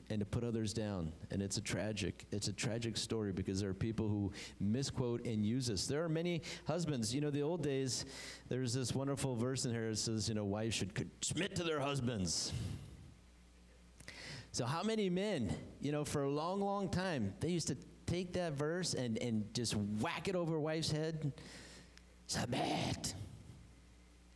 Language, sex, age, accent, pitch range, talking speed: English, male, 30-49, American, 80-125 Hz, 180 wpm